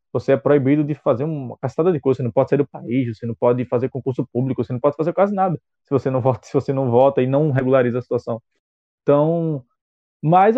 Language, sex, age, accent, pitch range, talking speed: Portuguese, male, 20-39, Brazilian, 135-180 Hz, 220 wpm